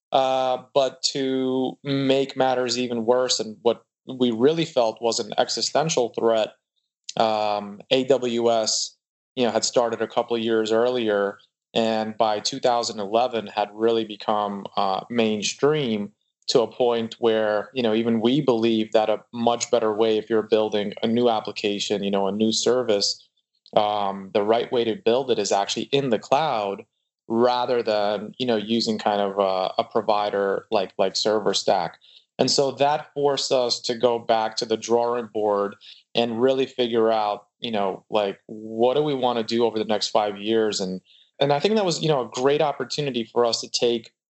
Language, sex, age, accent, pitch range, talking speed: English, male, 20-39, American, 110-125 Hz, 175 wpm